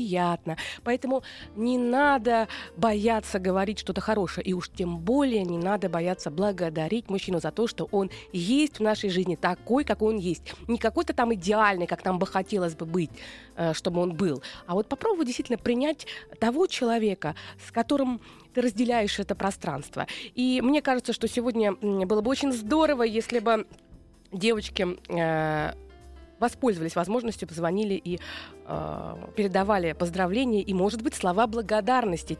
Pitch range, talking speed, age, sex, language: 175-235 Hz, 150 wpm, 20-39, female, Russian